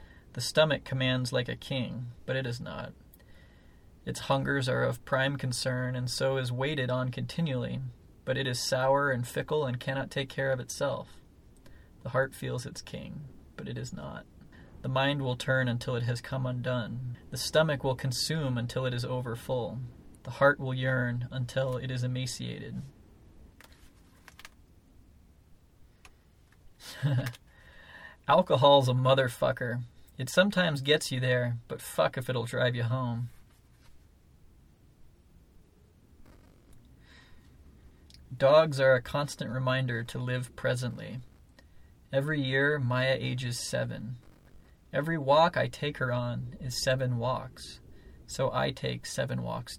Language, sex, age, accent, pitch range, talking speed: English, male, 20-39, American, 90-135 Hz, 135 wpm